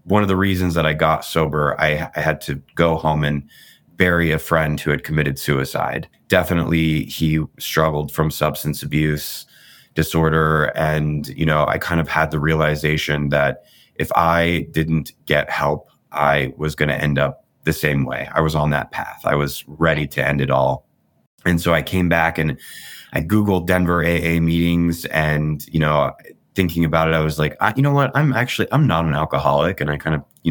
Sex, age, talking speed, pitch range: male, 20-39, 195 wpm, 75-90 Hz